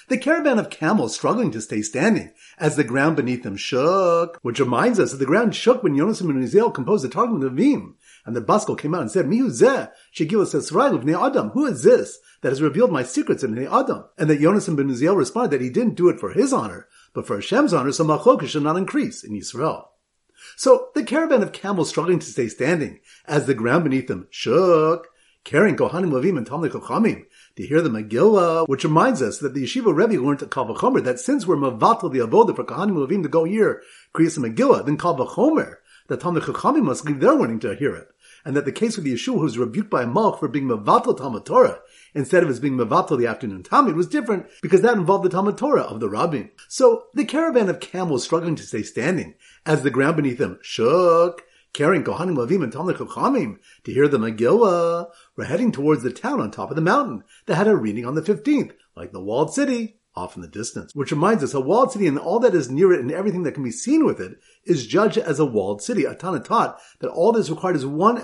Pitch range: 140-225 Hz